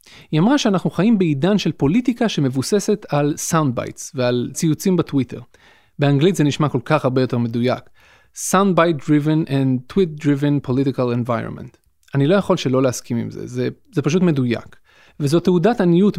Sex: male